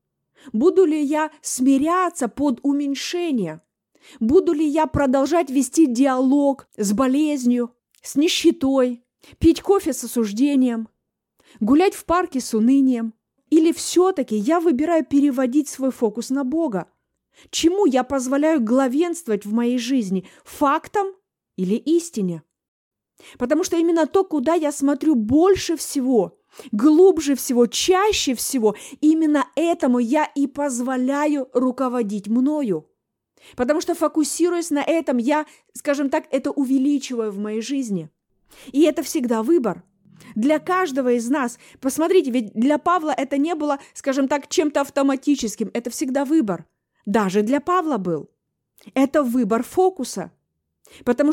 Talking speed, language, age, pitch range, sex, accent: 125 wpm, Russian, 30-49, 245-315 Hz, female, native